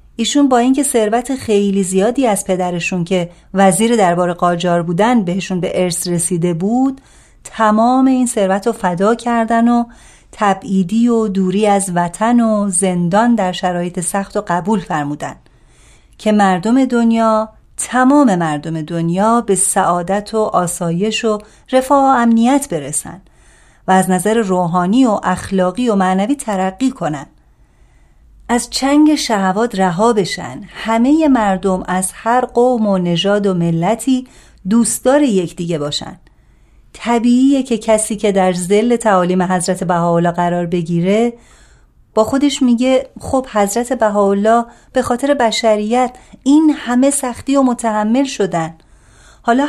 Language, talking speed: Persian, 130 wpm